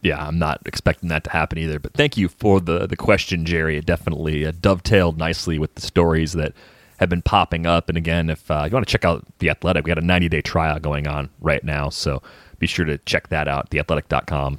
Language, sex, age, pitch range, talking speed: English, male, 30-49, 80-100 Hz, 240 wpm